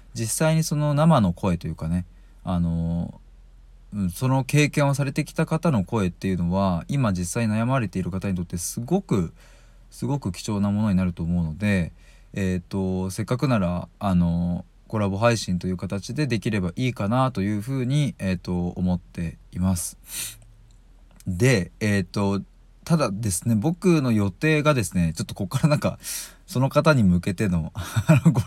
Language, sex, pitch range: Japanese, male, 90-130 Hz